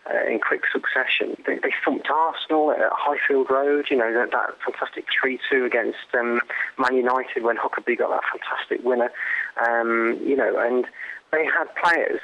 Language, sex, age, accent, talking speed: English, male, 30-49, British, 165 wpm